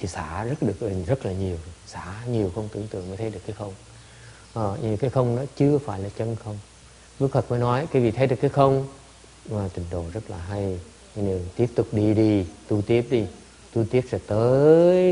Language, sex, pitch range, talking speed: English, male, 100-125 Hz, 215 wpm